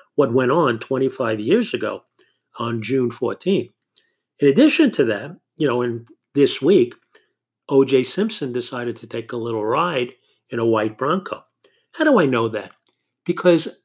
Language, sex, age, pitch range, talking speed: English, male, 50-69, 125-180 Hz, 155 wpm